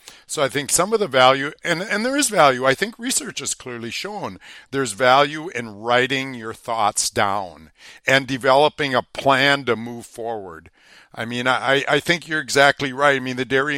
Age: 60-79